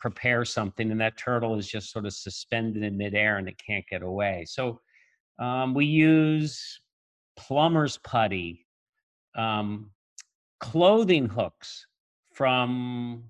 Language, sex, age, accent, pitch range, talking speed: English, male, 50-69, American, 110-140 Hz, 120 wpm